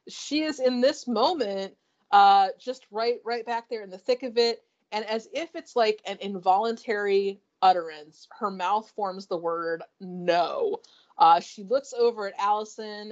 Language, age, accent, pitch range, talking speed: English, 30-49, American, 195-250 Hz, 165 wpm